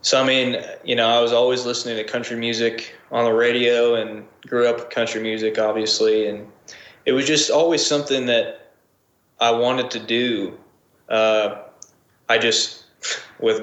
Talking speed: 165 wpm